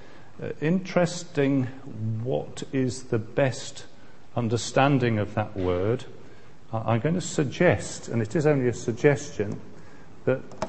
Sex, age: male, 40-59